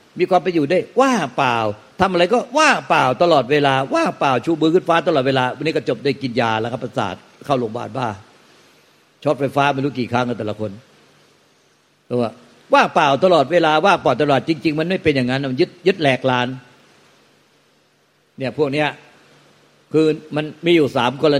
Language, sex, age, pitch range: Thai, male, 60-79, 130-155 Hz